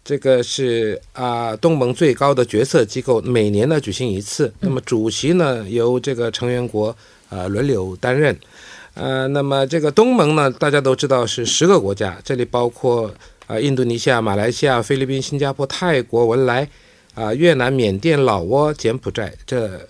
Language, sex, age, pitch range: Korean, male, 50-69, 110-155 Hz